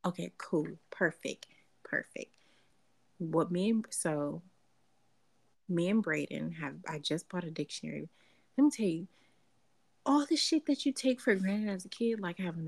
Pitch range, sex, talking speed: 165-210 Hz, female, 160 wpm